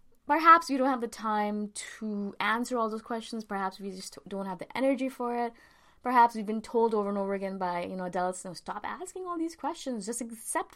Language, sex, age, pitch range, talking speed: English, female, 20-39, 185-235 Hz, 225 wpm